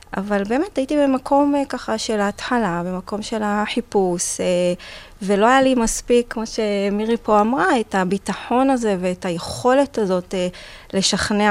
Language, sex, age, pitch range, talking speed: Hebrew, female, 20-39, 185-230 Hz, 130 wpm